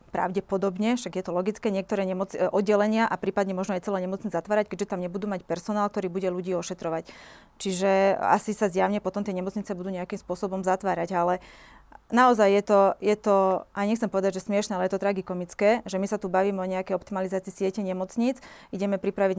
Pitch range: 185-205 Hz